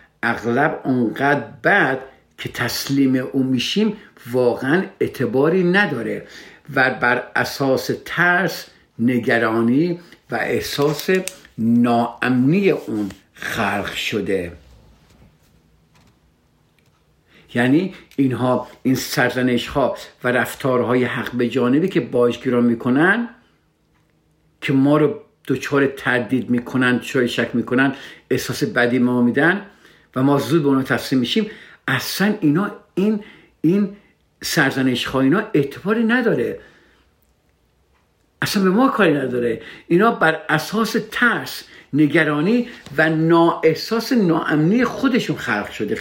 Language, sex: Persian, male